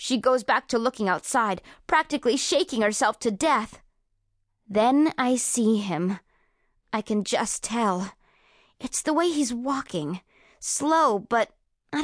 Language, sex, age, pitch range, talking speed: English, female, 20-39, 195-280 Hz, 135 wpm